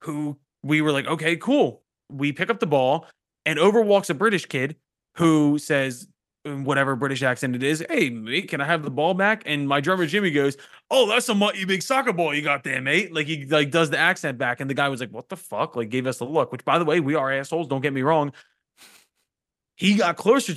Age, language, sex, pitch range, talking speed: 20-39, English, male, 145-205 Hz, 235 wpm